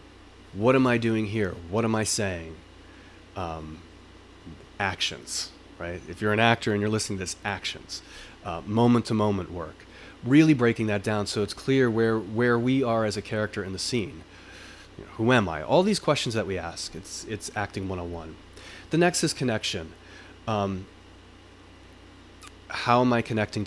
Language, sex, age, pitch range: English, male, 30-49, 90-110 Hz